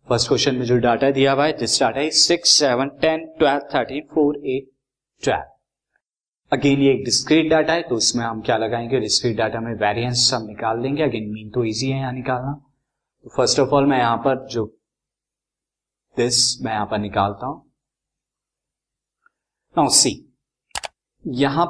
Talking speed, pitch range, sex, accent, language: 125 wpm, 120-145 Hz, male, native, Hindi